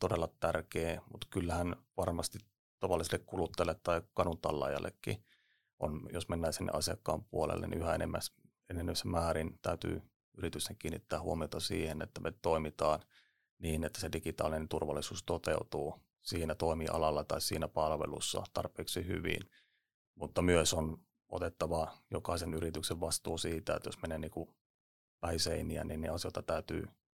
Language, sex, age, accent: Finnish, male, 30-49, native